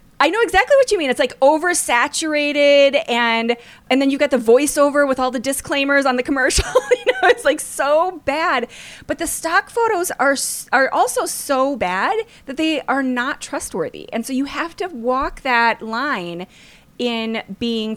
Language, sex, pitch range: English, female, 200-285 Hz